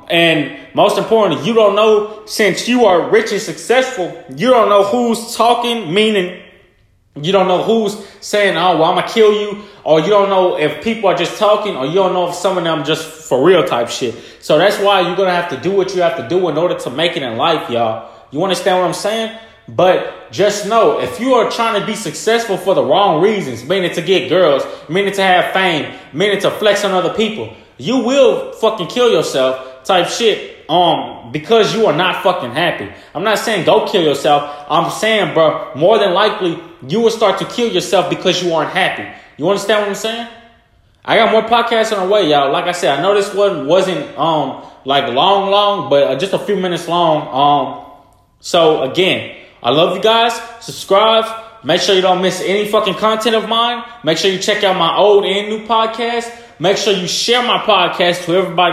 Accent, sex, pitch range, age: American, male, 175-220 Hz, 20-39